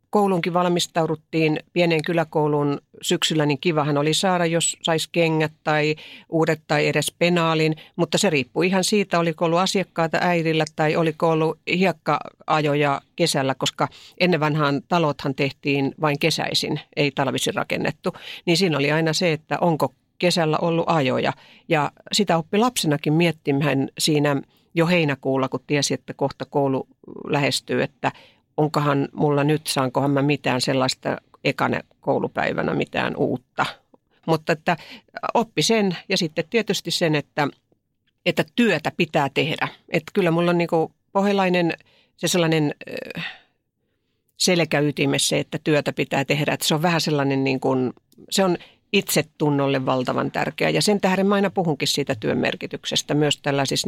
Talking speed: 140 wpm